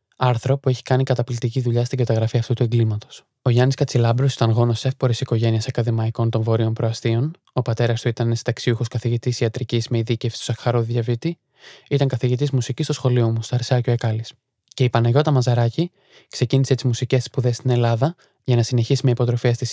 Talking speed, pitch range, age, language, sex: 180 wpm, 120-130 Hz, 20-39, Greek, male